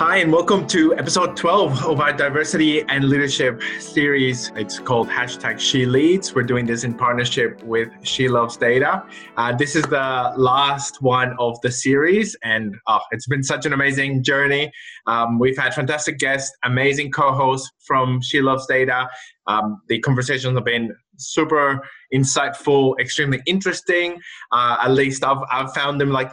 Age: 20-39